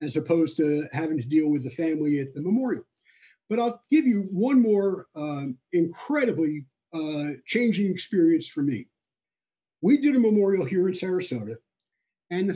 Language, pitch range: English, 160-225 Hz